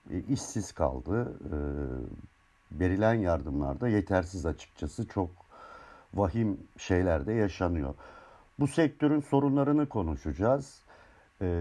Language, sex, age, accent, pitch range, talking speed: Turkish, male, 60-79, native, 95-135 Hz, 90 wpm